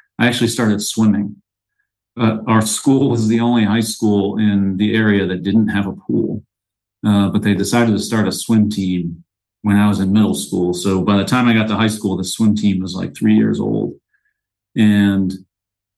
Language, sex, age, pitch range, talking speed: English, male, 40-59, 100-110 Hz, 200 wpm